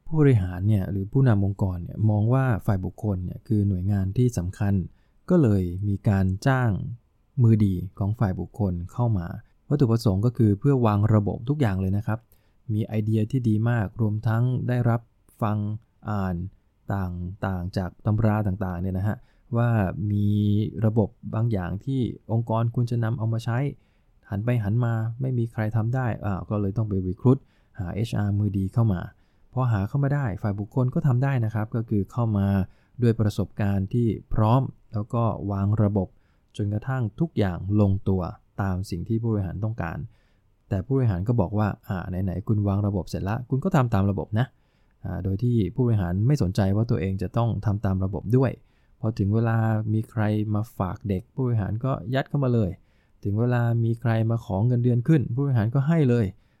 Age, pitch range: 20-39, 100-120 Hz